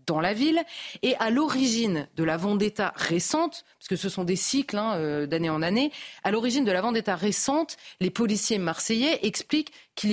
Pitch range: 185-240 Hz